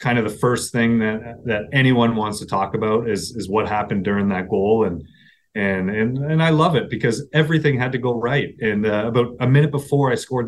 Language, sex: English, male